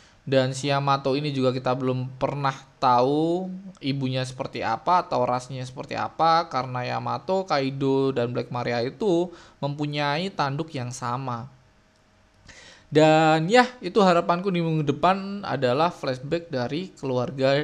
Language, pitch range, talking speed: Indonesian, 130-170 Hz, 130 wpm